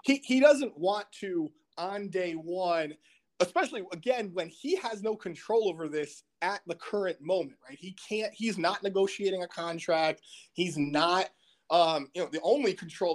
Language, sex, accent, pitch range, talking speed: English, male, American, 150-185 Hz, 170 wpm